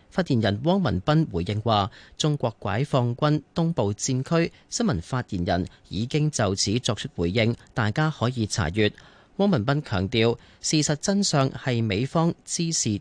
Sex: male